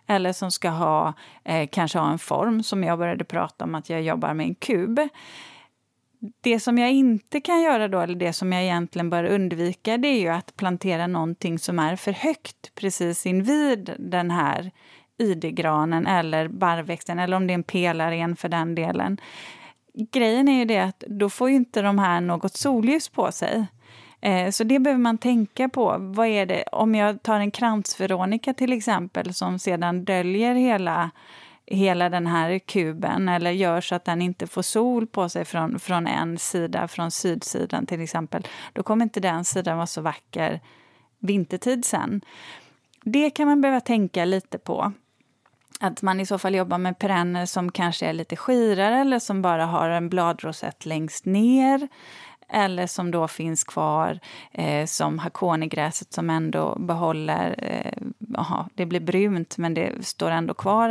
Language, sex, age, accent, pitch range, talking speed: Swedish, female, 30-49, native, 170-225 Hz, 175 wpm